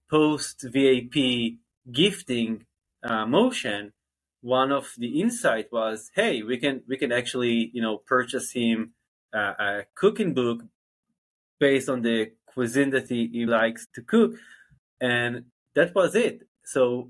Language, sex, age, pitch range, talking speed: Hebrew, male, 20-39, 115-140 Hz, 135 wpm